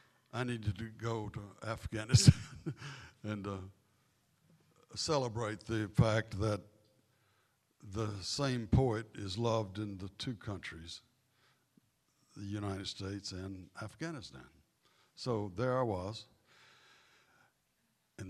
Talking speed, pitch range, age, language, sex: 100 wpm, 105-140 Hz, 60-79, English, male